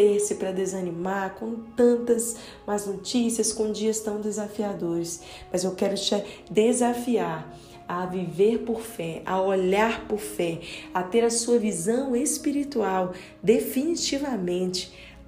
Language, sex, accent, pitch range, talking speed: Portuguese, female, Brazilian, 190-225 Hz, 120 wpm